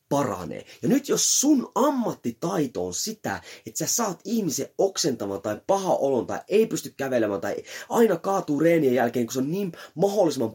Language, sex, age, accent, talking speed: Finnish, male, 30-49, native, 170 wpm